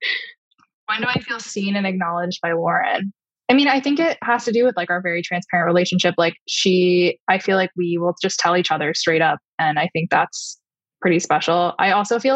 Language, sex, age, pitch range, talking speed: English, female, 10-29, 170-210 Hz, 220 wpm